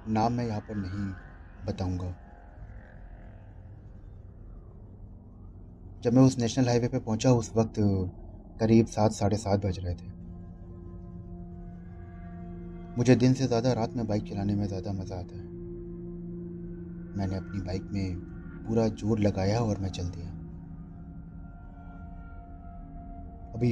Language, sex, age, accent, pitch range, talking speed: Hindi, male, 30-49, native, 90-110 Hz, 120 wpm